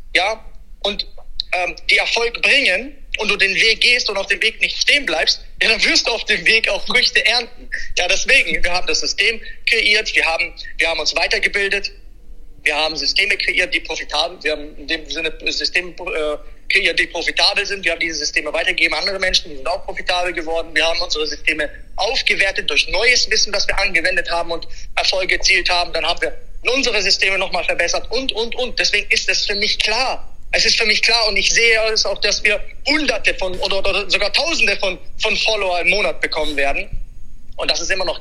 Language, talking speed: German, 205 wpm